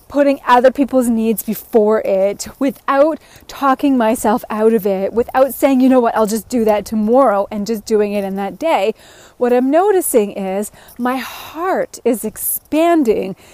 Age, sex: 30-49, female